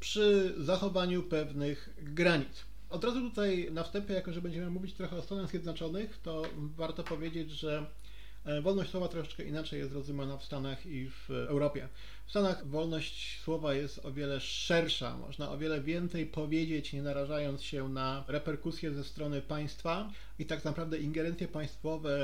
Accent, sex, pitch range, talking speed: native, male, 140-170 Hz, 155 wpm